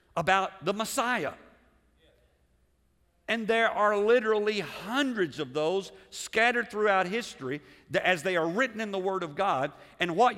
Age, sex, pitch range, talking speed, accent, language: 50-69, male, 155-210 Hz, 145 wpm, American, English